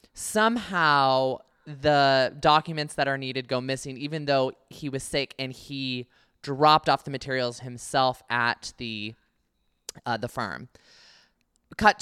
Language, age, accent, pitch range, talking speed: English, 20-39, American, 125-145 Hz, 130 wpm